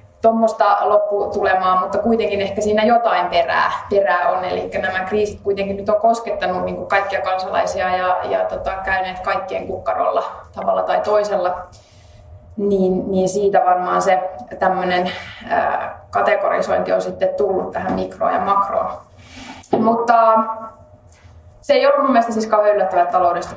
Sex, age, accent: female, 20-39, native